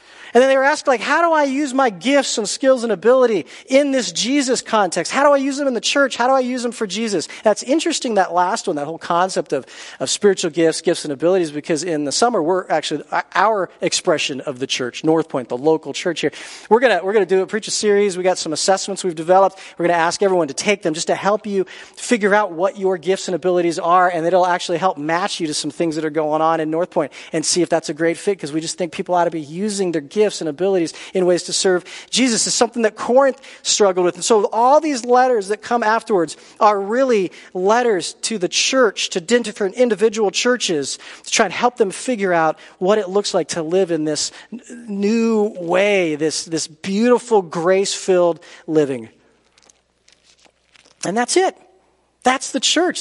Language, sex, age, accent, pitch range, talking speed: English, male, 40-59, American, 170-245 Hz, 220 wpm